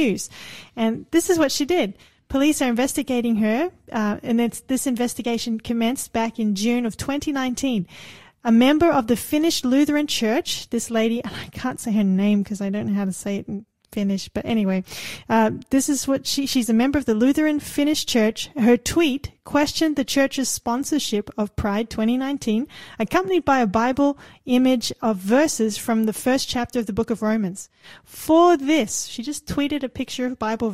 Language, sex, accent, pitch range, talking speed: English, female, Australian, 220-280 Hz, 180 wpm